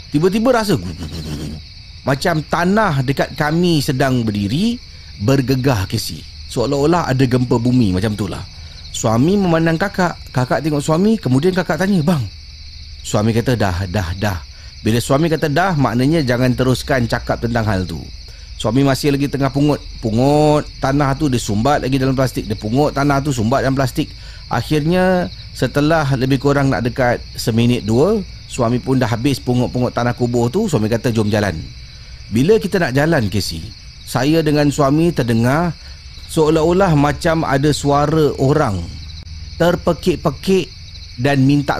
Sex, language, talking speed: male, Malay, 145 wpm